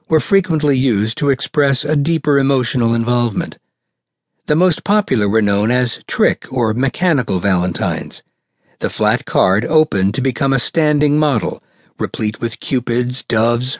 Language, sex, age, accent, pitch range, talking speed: English, male, 60-79, American, 110-155 Hz, 140 wpm